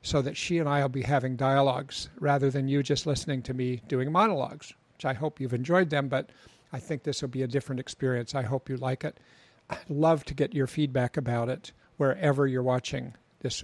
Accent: American